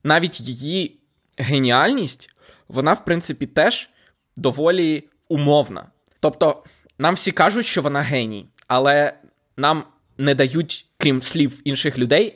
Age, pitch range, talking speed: 20-39, 130-165 Hz, 115 wpm